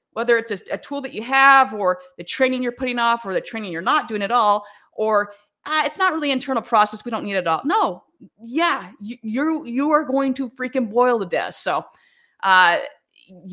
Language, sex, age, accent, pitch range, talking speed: English, female, 30-49, American, 180-255 Hz, 220 wpm